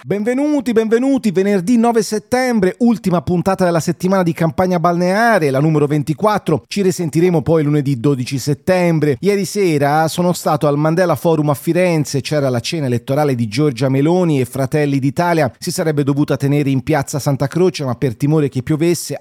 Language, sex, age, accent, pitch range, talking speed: Italian, male, 30-49, native, 140-175 Hz, 165 wpm